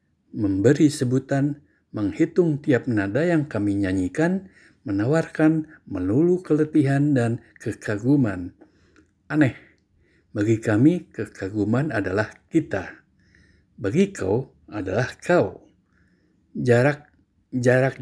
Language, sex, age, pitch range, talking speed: Indonesian, male, 60-79, 100-140 Hz, 85 wpm